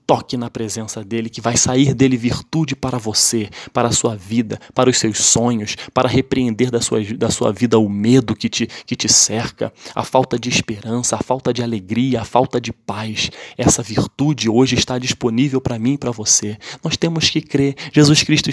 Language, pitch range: Portuguese, 115-140 Hz